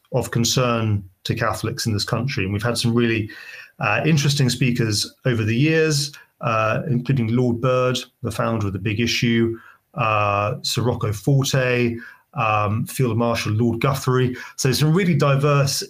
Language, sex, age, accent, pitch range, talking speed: English, male, 30-49, British, 110-140 Hz, 155 wpm